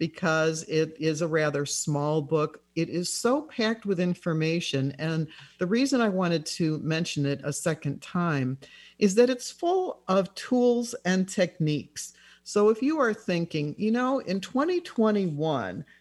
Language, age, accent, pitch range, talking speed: English, 50-69, American, 155-210 Hz, 155 wpm